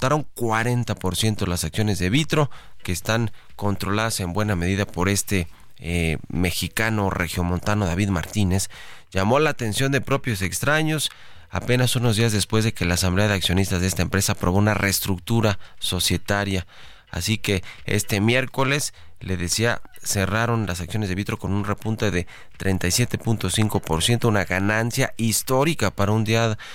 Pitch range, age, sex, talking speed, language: 90-115 Hz, 30-49, male, 140 wpm, Spanish